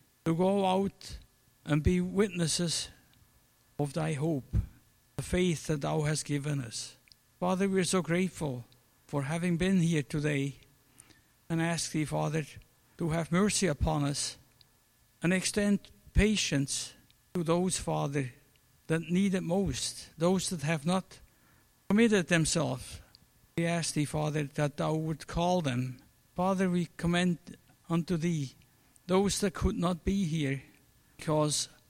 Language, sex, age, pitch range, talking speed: English, male, 60-79, 135-180 Hz, 135 wpm